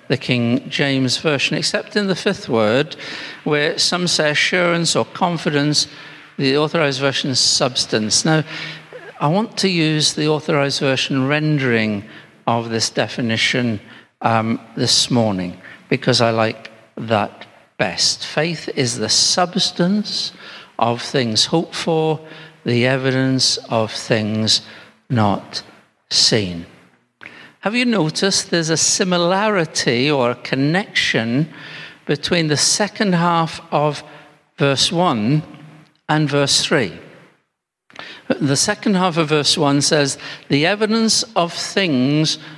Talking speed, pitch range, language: 120 wpm, 130-175 Hz, English